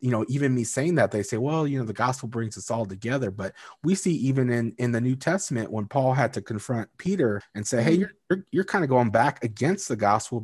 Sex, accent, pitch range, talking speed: male, American, 105-125 Hz, 260 wpm